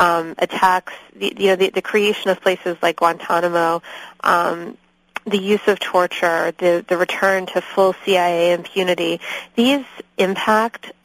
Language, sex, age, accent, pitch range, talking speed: English, female, 20-39, American, 175-190 Hz, 135 wpm